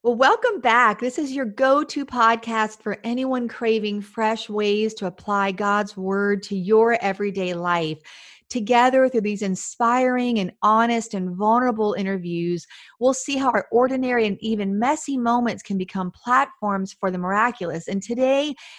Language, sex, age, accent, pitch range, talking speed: English, female, 40-59, American, 185-235 Hz, 155 wpm